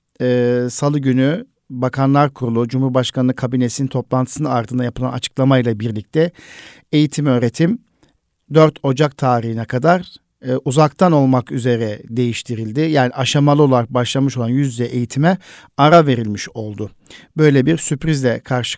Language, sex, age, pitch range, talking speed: Turkish, male, 50-69, 125-150 Hz, 120 wpm